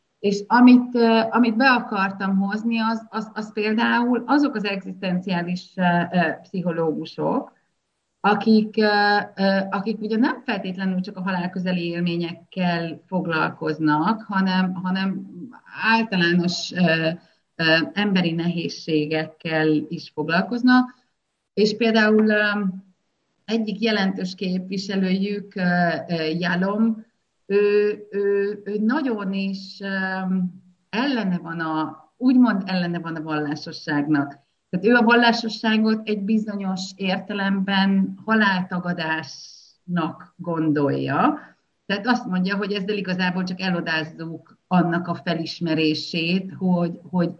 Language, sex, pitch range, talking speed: Hungarian, female, 170-210 Hz, 90 wpm